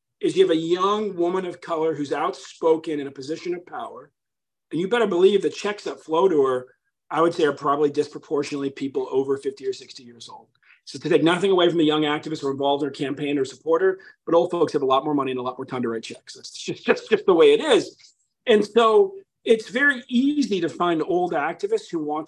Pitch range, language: 140-240 Hz, English